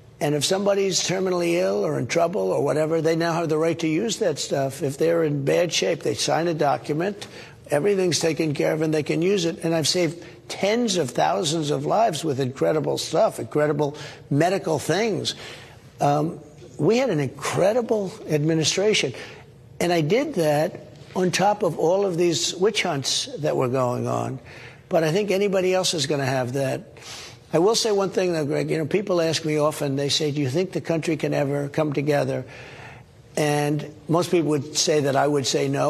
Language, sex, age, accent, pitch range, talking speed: English, male, 60-79, American, 145-175 Hz, 195 wpm